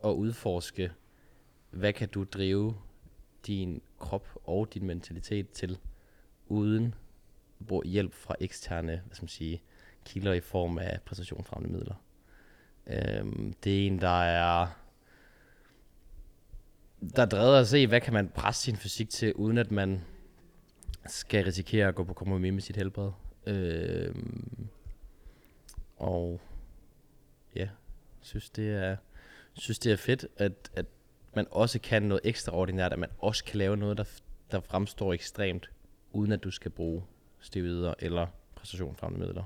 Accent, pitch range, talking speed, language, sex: native, 90-105 Hz, 145 wpm, Danish, male